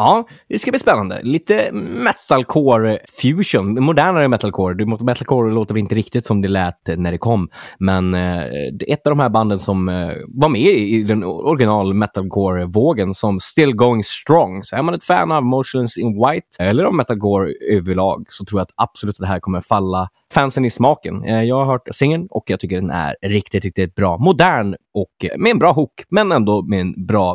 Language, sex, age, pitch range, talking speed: Swedish, male, 20-39, 100-145 Hz, 190 wpm